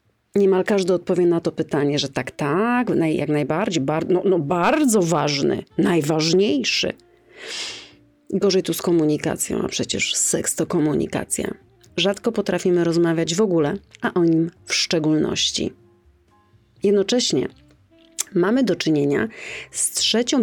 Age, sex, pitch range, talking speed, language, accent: 30-49, female, 155-195 Hz, 125 wpm, Polish, native